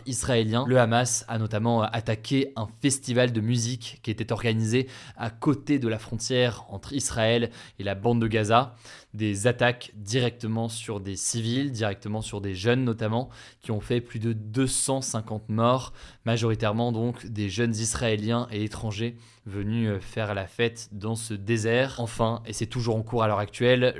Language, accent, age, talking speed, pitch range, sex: French, French, 20-39, 165 wpm, 110-125 Hz, male